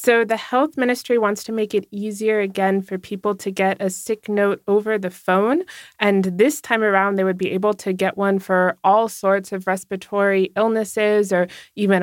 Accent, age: American, 20-39